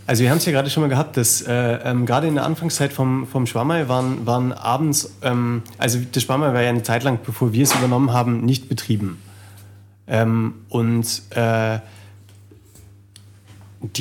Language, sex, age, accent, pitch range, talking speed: German, male, 30-49, German, 110-130 Hz, 170 wpm